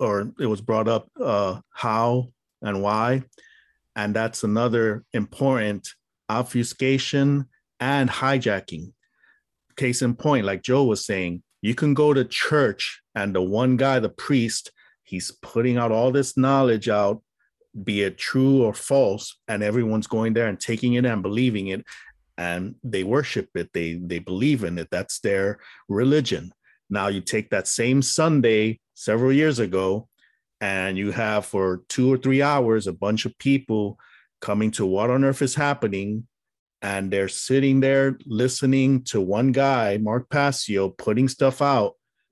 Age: 50-69